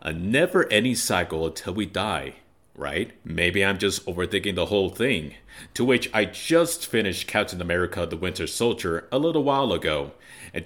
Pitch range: 85-130 Hz